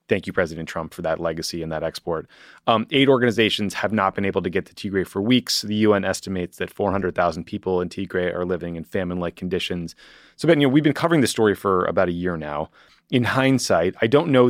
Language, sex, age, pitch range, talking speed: English, male, 30-49, 90-120 Hz, 230 wpm